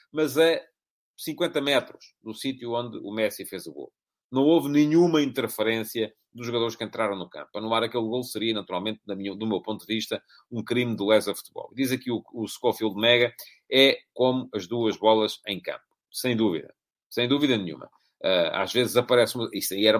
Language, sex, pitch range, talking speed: English, male, 115-150 Hz, 185 wpm